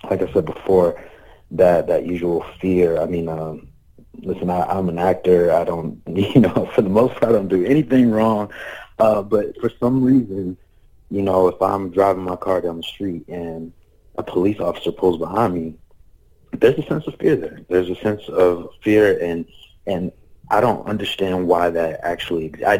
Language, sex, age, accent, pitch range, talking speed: English, male, 30-49, American, 85-95 Hz, 185 wpm